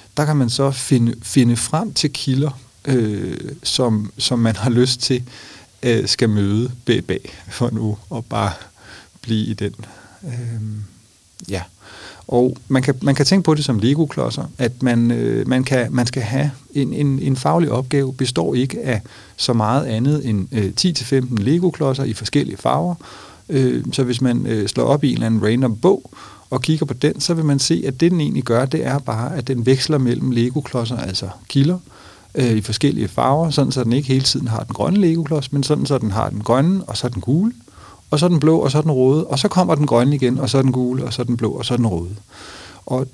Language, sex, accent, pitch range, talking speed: Danish, male, native, 115-145 Hz, 215 wpm